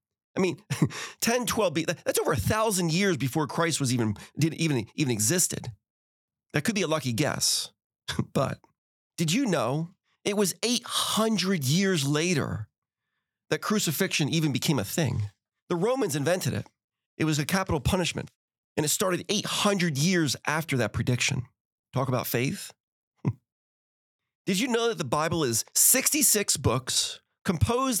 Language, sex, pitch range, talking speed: English, male, 140-190 Hz, 145 wpm